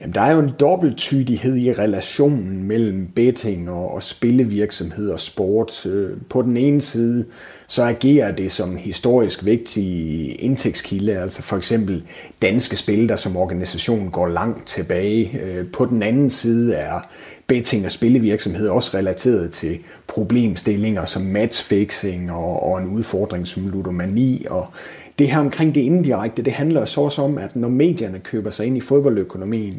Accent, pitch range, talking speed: native, 100-130 Hz, 145 wpm